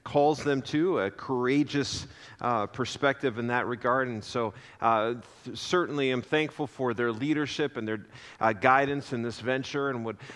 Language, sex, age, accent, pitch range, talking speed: English, male, 40-59, American, 125-165 Hz, 160 wpm